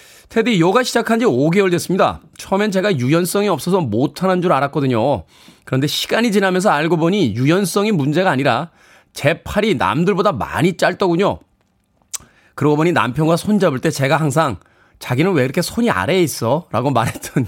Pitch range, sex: 140-195 Hz, male